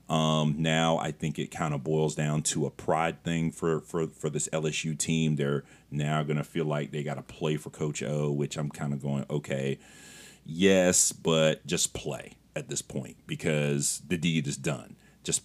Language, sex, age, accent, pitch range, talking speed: English, male, 40-59, American, 70-80 Hz, 200 wpm